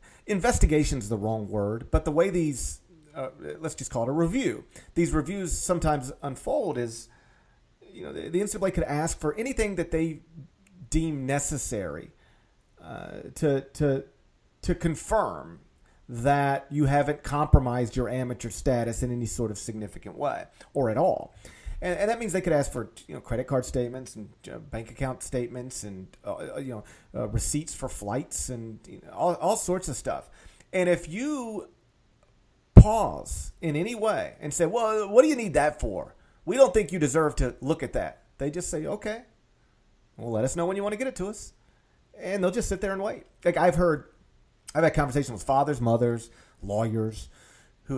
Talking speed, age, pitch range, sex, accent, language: 180 wpm, 40-59, 120-170 Hz, male, American, English